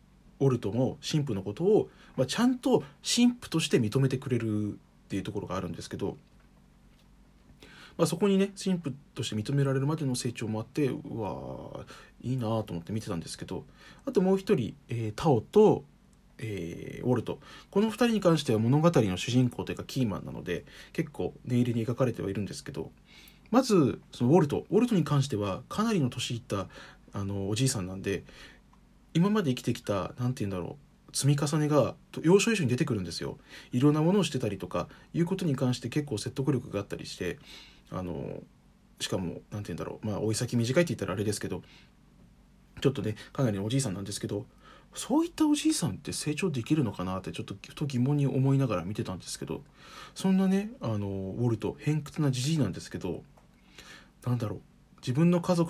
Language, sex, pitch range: Japanese, male, 105-160 Hz